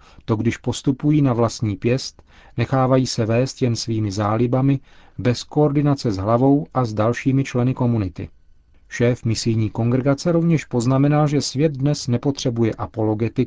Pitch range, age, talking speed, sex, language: 110-140 Hz, 40-59, 140 wpm, male, Czech